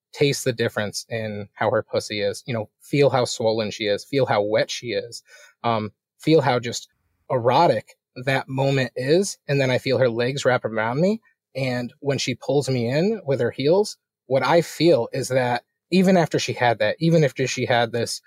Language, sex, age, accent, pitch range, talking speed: English, male, 30-49, American, 115-185 Hz, 200 wpm